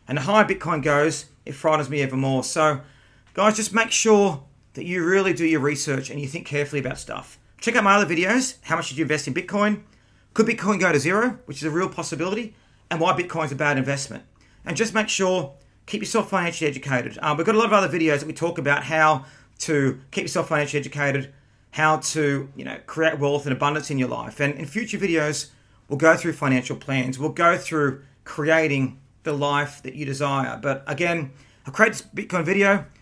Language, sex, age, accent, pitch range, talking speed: English, male, 30-49, Australian, 140-175 Hz, 215 wpm